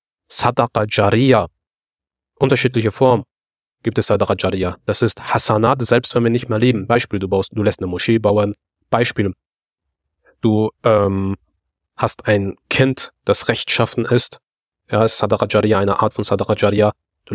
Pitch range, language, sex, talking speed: 105-130 Hz, German, male, 140 wpm